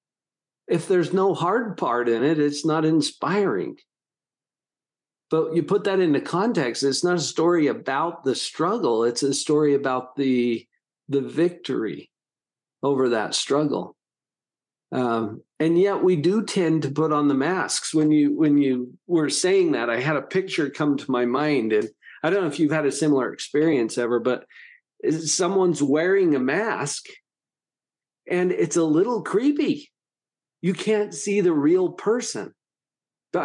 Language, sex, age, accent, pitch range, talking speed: English, male, 50-69, American, 145-210 Hz, 155 wpm